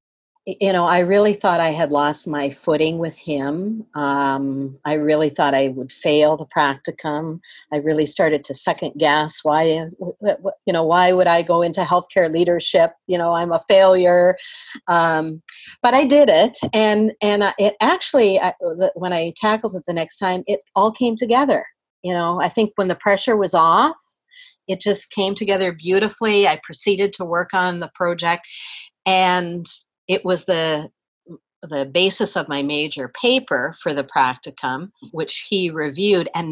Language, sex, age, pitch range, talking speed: English, female, 40-59, 160-215 Hz, 165 wpm